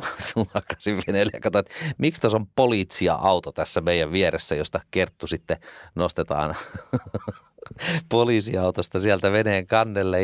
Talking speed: 110 wpm